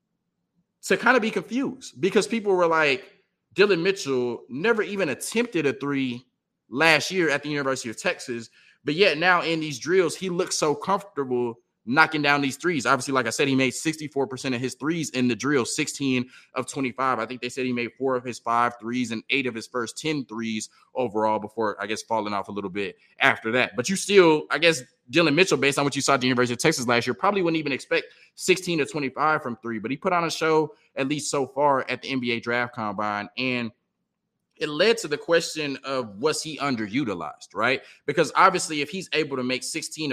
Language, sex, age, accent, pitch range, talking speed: English, male, 20-39, American, 120-155 Hz, 215 wpm